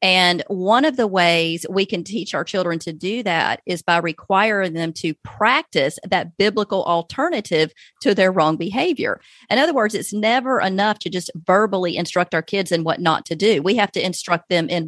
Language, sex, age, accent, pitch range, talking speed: English, female, 40-59, American, 180-230 Hz, 200 wpm